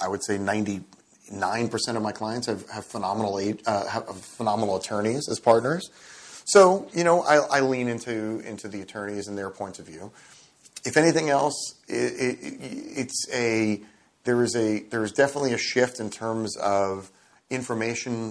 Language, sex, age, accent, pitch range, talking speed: English, male, 30-49, American, 100-120 Hz, 170 wpm